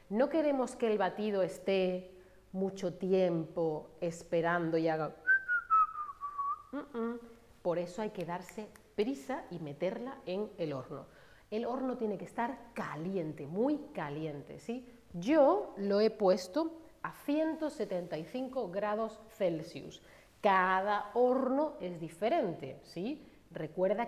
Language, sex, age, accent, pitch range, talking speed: Spanish, female, 40-59, Spanish, 180-250 Hz, 110 wpm